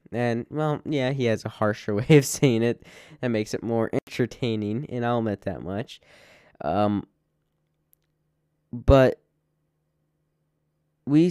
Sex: male